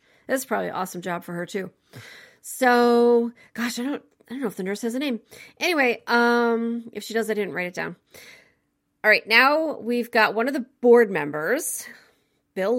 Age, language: 40-59, English